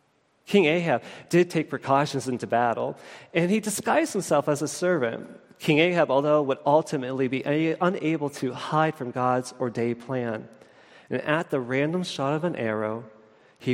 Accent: American